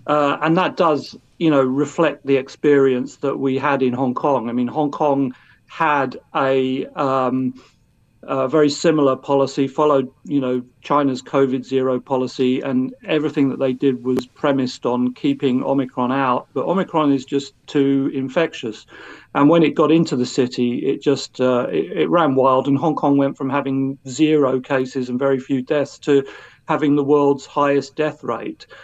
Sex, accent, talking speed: male, British, 175 wpm